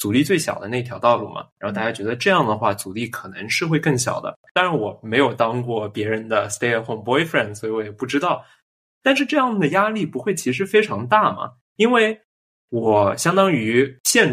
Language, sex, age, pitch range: Chinese, male, 20-39, 110-165 Hz